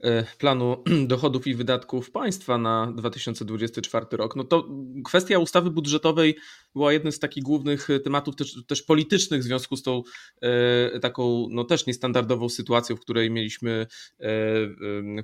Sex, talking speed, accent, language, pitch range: male, 140 wpm, native, Polish, 115-140 Hz